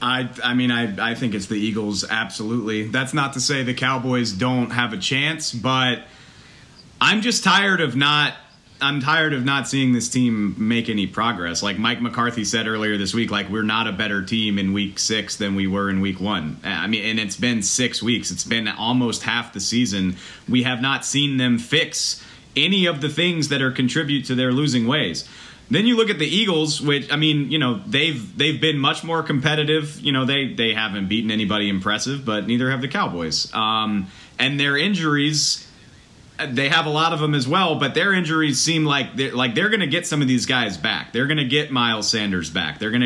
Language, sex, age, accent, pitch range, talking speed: English, male, 30-49, American, 110-145 Hz, 215 wpm